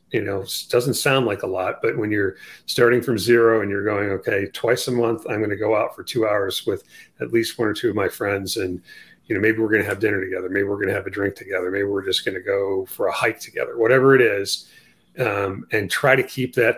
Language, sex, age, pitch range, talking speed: English, male, 40-59, 100-120 Hz, 270 wpm